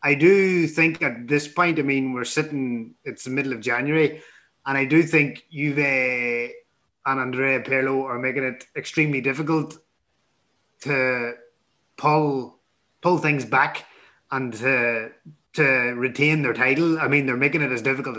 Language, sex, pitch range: English, male, 130-160 Hz